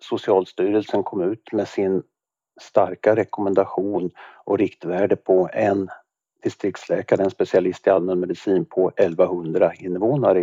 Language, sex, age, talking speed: Swedish, male, 50-69, 110 wpm